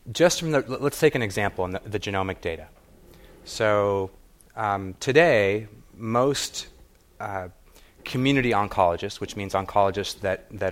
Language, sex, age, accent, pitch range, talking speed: English, male, 30-49, American, 90-110 Hz, 135 wpm